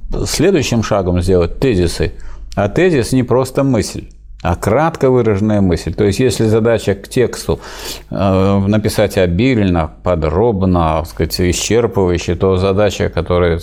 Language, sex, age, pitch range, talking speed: Russian, male, 50-69, 90-110 Hz, 120 wpm